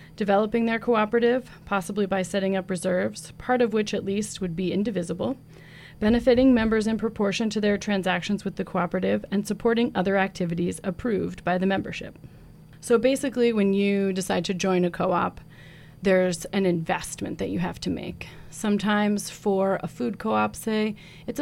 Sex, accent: female, American